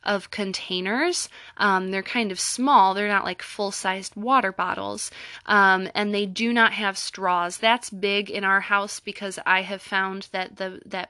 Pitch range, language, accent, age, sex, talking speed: 185-210 Hz, English, American, 20-39, female, 175 wpm